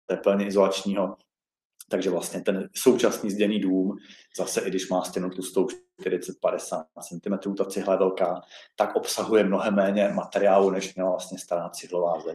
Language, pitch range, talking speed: Czech, 95-110 Hz, 155 wpm